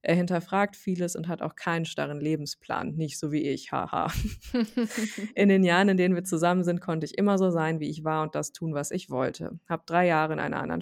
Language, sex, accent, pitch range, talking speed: German, female, German, 155-185 Hz, 235 wpm